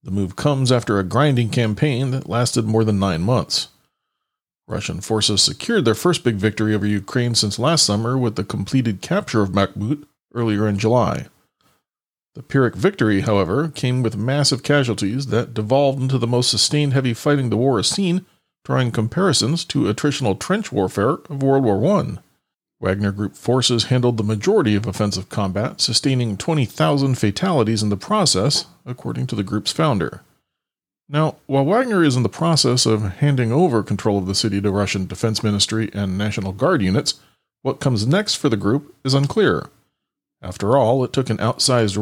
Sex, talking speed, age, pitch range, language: male, 170 wpm, 40-59, 105-140 Hz, English